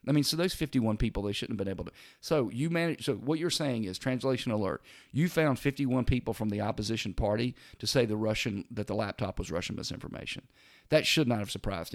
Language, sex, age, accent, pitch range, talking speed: English, male, 40-59, American, 100-125 Hz, 225 wpm